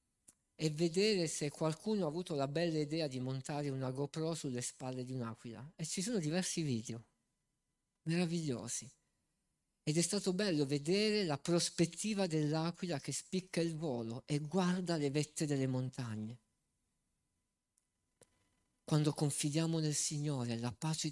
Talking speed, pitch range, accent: 135 wpm, 125-160 Hz, native